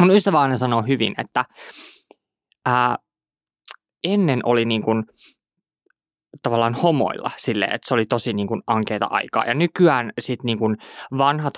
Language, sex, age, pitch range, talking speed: Finnish, male, 20-39, 110-130 Hz, 130 wpm